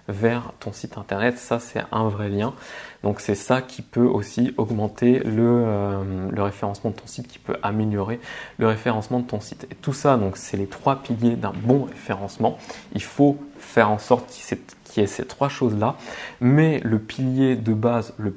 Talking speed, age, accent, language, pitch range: 195 wpm, 20-39, French, French, 105-125 Hz